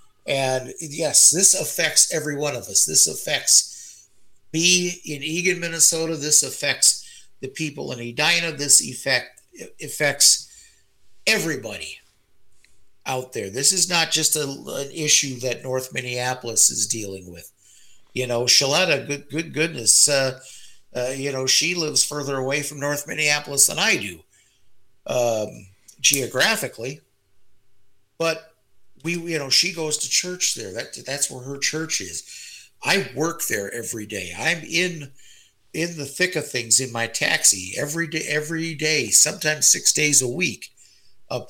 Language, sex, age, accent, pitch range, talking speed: English, male, 50-69, American, 120-160 Hz, 145 wpm